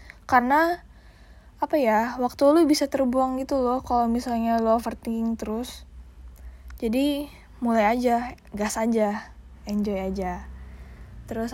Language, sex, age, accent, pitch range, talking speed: Indonesian, female, 10-29, native, 200-260 Hz, 115 wpm